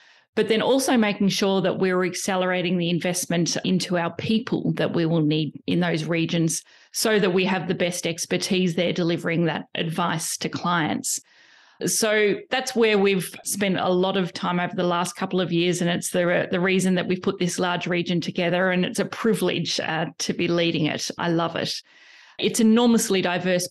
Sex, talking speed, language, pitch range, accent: female, 190 wpm, English, 175-195 Hz, Australian